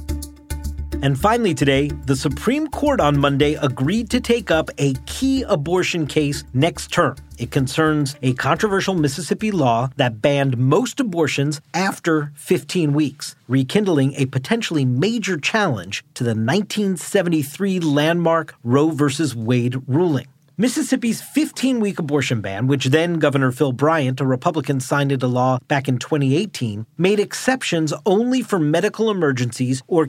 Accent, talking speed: American, 135 wpm